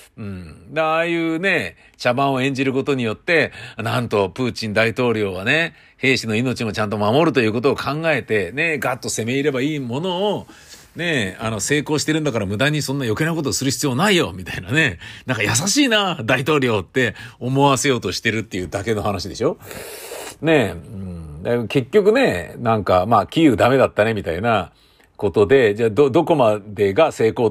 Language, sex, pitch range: Japanese, male, 105-145 Hz